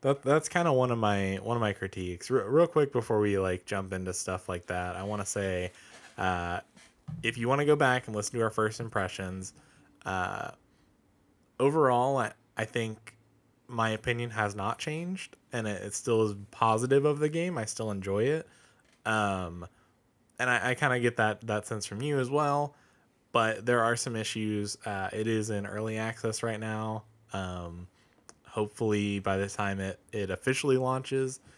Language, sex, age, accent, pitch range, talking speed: English, male, 20-39, American, 100-120 Hz, 185 wpm